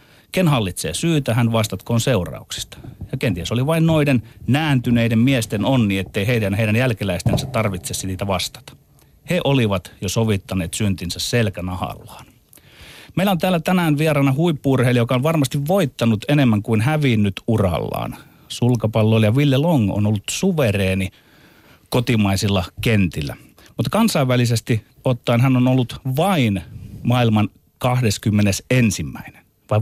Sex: male